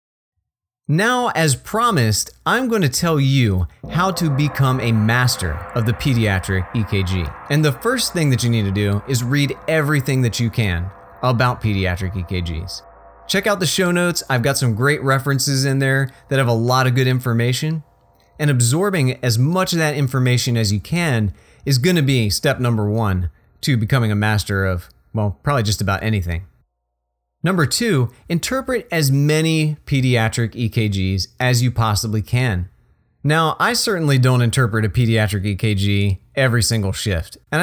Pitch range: 105-155 Hz